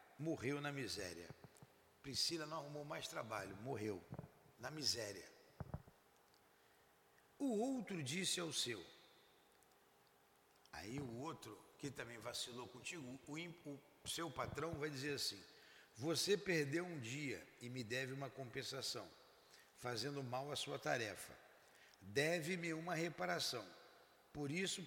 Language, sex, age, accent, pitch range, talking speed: Portuguese, male, 60-79, Brazilian, 130-170 Hz, 120 wpm